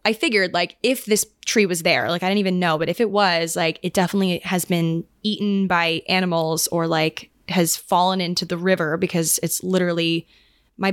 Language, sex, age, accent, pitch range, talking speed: English, female, 20-39, American, 175-215 Hz, 200 wpm